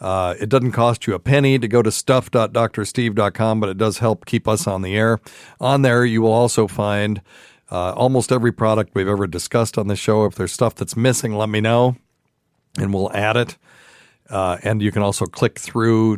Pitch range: 100-125 Hz